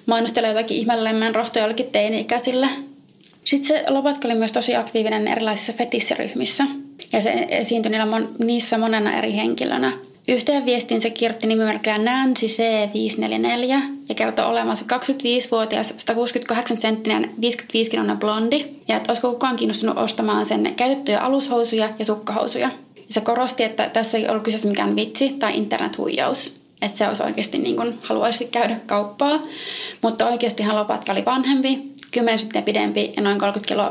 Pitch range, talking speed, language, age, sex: 220-260 Hz, 140 wpm, Finnish, 20-39, female